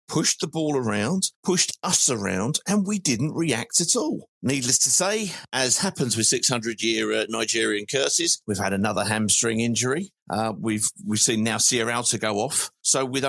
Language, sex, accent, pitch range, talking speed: English, male, British, 105-145 Hz, 175 wpm